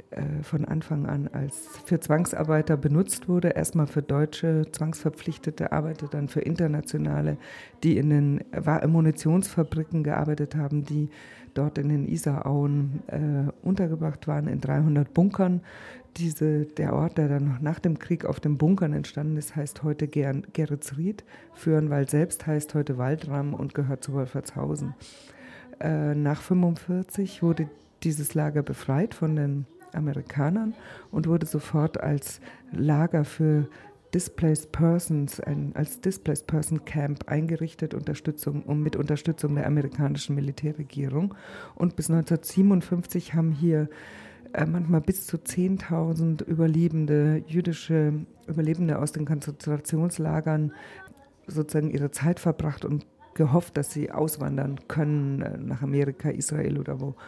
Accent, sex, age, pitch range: German, female, 50-69, 145-165 Hz